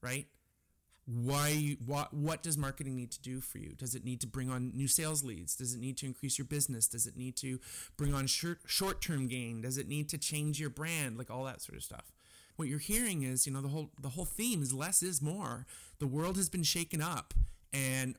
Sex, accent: male, American